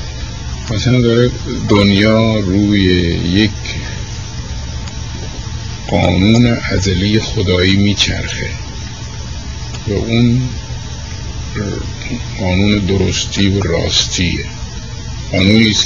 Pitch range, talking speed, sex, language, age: 90-110 Hz, 55 wpm, male, Persian, 50-69